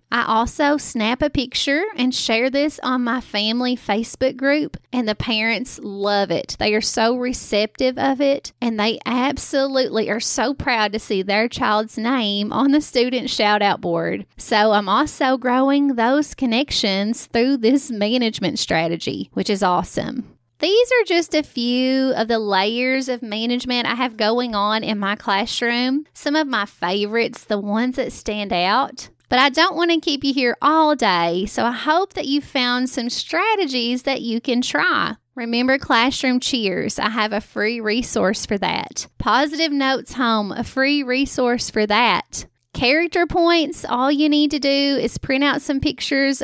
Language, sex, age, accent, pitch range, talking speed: English, female, 30-49, American, 220-275 Hz, 170 wpm